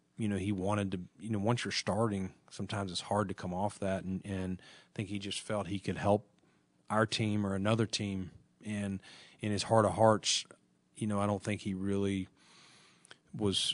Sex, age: male, 30-49